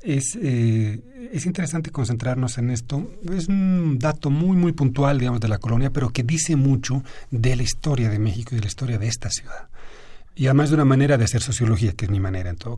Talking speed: 220 wpm